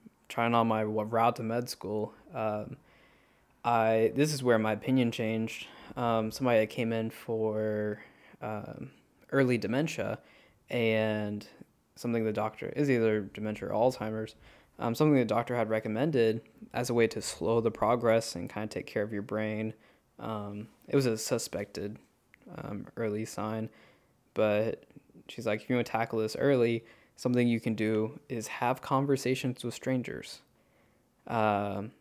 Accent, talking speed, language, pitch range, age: American, 150 wpm, English, 110-120 Hz, 10-29